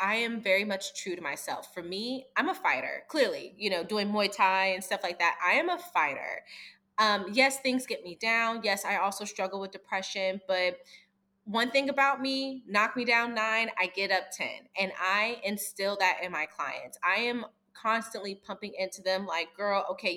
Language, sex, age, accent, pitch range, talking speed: English, female, 20-39, American, 185-230 Hz, 200 wpm